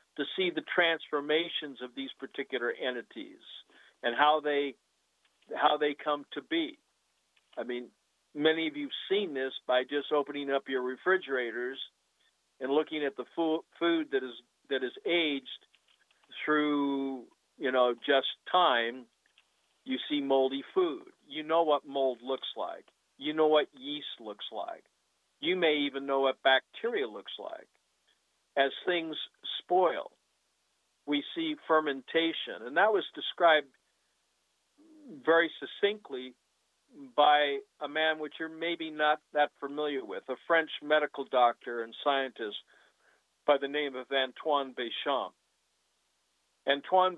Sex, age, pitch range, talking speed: male, 50-69, 135-165 Hz, 130 wpm